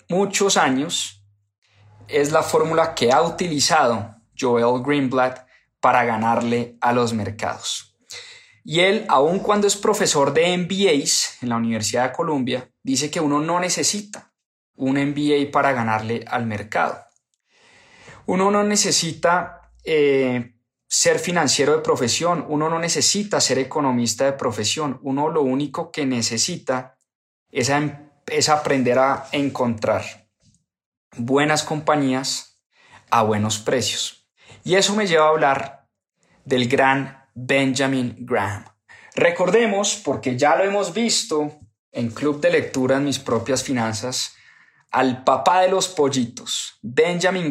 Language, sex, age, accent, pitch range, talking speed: English, male, 20-39, Colombian, 125-160 Hz, 125 wpm